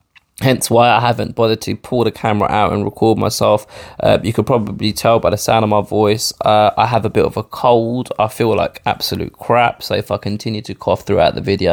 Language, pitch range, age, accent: English, 100-120 Hz, 20-39, British